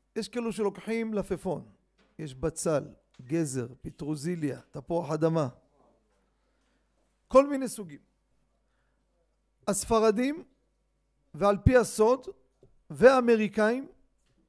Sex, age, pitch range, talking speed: male, 50-69, 180-230 Hz, 75 wpm